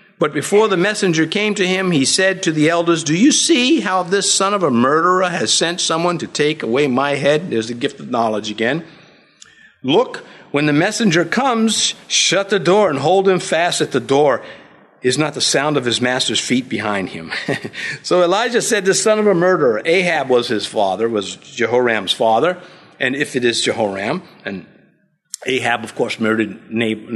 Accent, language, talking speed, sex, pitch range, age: American, English, 190 wpm, male, 130-195 Hz, 50-69